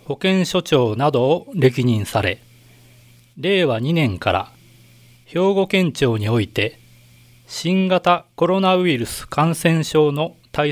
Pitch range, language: 120-165 Hz, Japanese